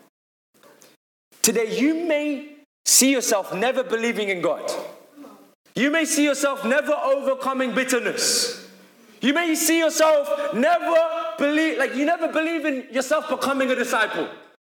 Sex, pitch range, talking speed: male, 195-300 Hz, 125 wpm